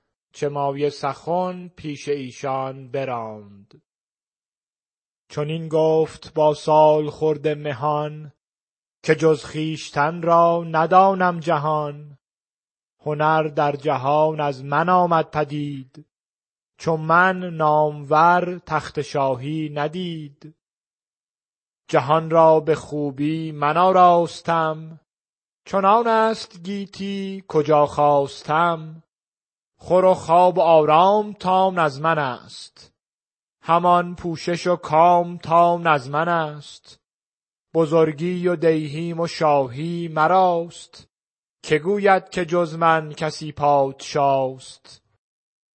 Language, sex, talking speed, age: Persian, male, 95 wpm, 30-49